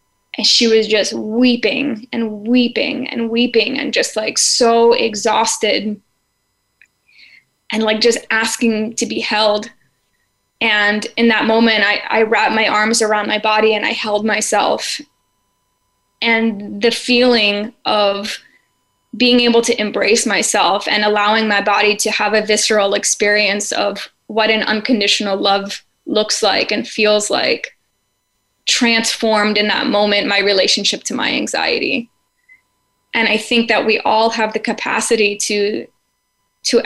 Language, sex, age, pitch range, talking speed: English, female, 10-29, 210-230 Hz, 140 wpm